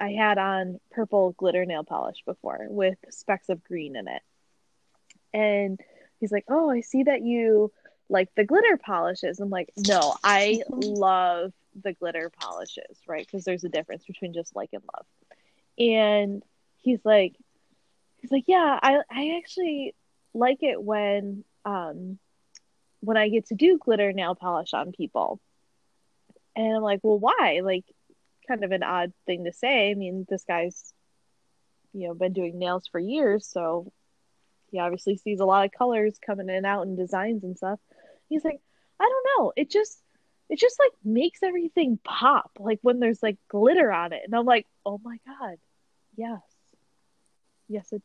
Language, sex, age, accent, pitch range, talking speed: English, female, 20-39, American, 190-240 Hz, 170 wpm